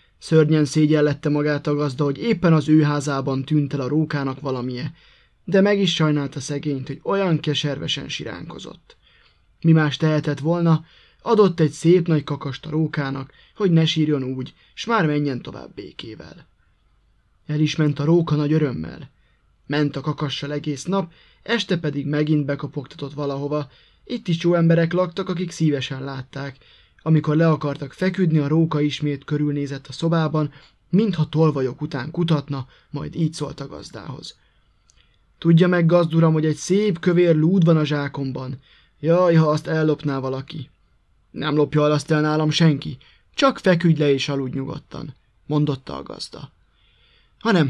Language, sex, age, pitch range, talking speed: Hungarian, male, 20-39, 140-165 Hz, 150 wpm